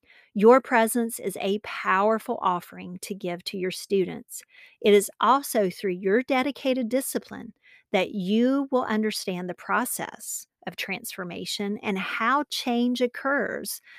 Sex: female